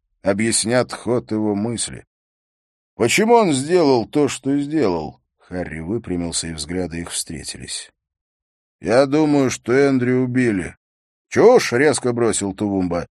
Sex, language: male, English